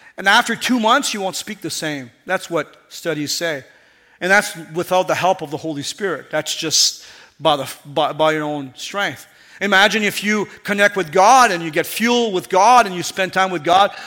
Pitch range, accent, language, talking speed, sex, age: 170-225 Hz, American, English, 205 wpm, male, 40-59